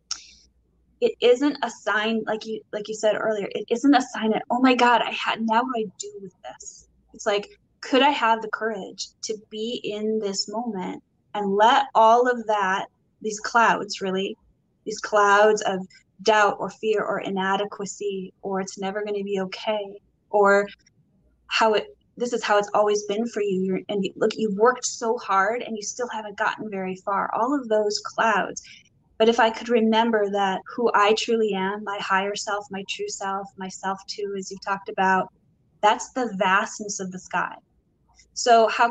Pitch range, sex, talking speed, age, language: 195-225 Hz, female, 190 wpm, 10-29, English